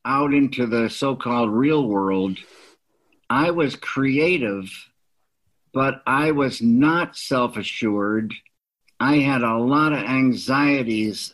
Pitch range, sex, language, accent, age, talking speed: 120-150 Hz, male, English, American, 60-79, 105 wpm